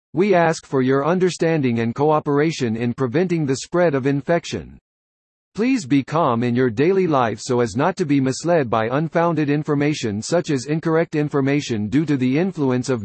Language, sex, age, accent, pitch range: Japanese, male, 50-69, American, 125-165 Hz